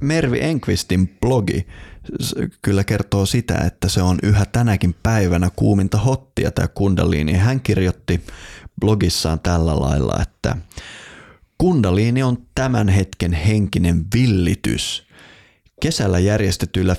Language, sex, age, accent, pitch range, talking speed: Finnish, male, 30-49, native, 85-105 Hz, 105 wpm